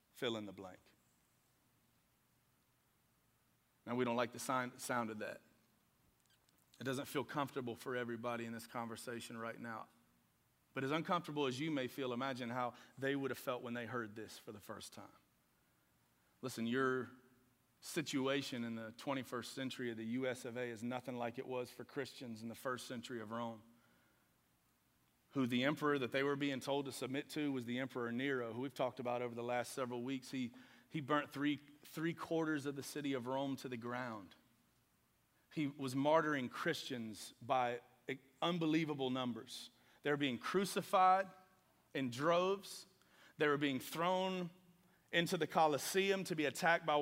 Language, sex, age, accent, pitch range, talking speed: English, male, 40-59, American, 120-155 Hz, 165 wpm